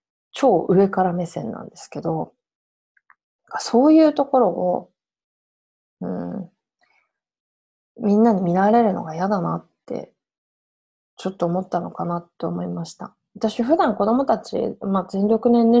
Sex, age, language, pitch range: female, 20-39, Japanese, 175-225 Hz